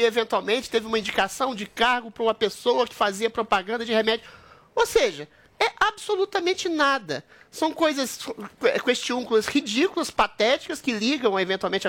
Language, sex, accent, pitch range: Portuguese, male, Brazilian, 195-275 Hz